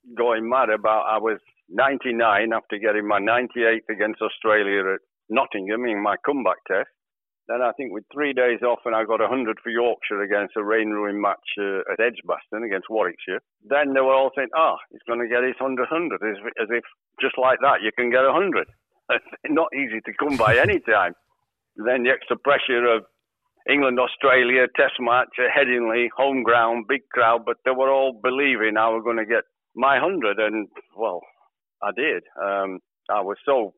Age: 60-79